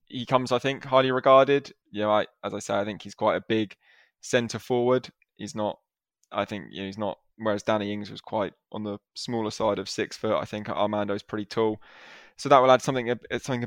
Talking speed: 225 wpm